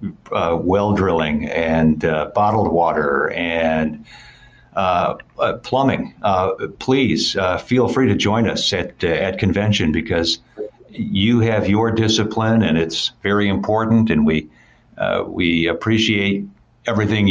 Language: English